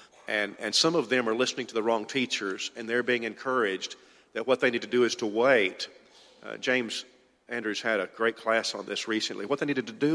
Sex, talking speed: male, 230 wpm